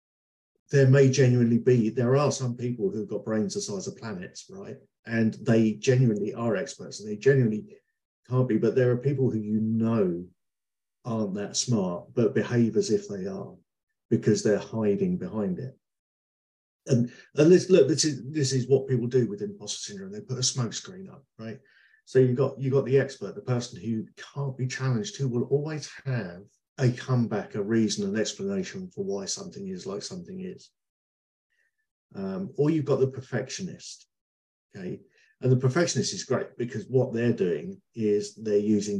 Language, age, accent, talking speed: English, 50-69, British, 180 wpm